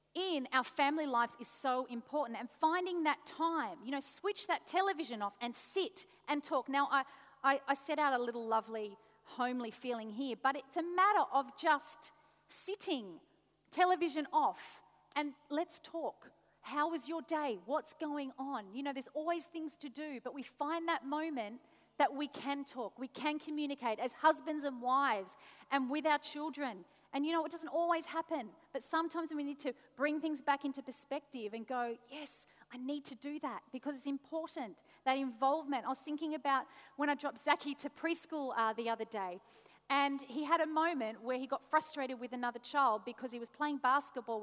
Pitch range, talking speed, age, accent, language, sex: 245-305 Hz, 190 wpm, 40-59, Australian, English, female